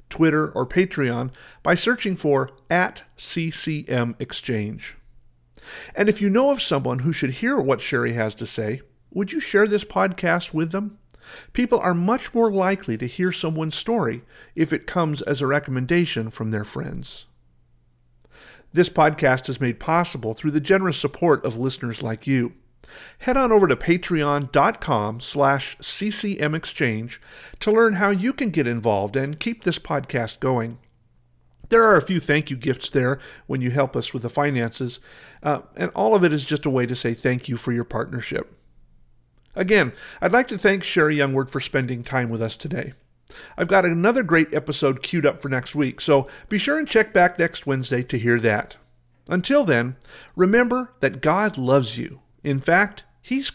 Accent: American